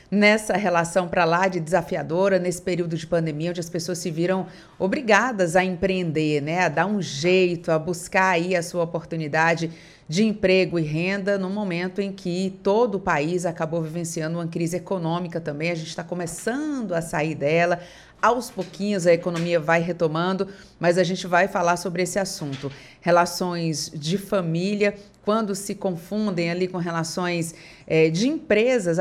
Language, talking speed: Portuguese, 160 wpm